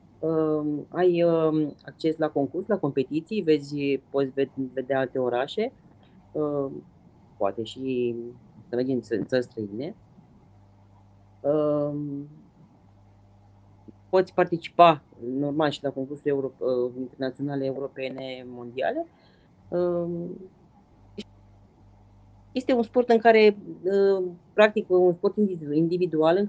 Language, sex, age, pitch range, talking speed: Romanian, female, 30-49, 135-180 Hz, 105 wpm